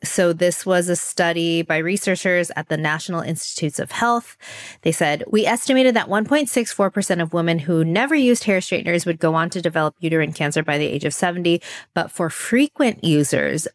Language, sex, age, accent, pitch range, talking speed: English, female, 20-39, American, 155-180 Hz, 185 wpm